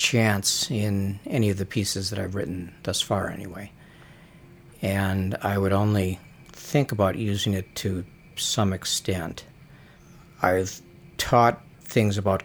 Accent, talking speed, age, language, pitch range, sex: American, 130 wpm, 60-79, English, 95-110 Hz, male